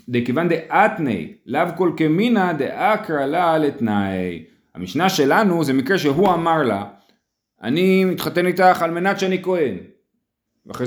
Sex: male